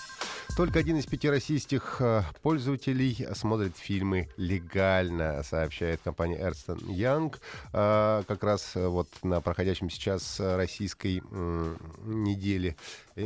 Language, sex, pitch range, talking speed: Russian, male, 90-135 Hz, 100 wpm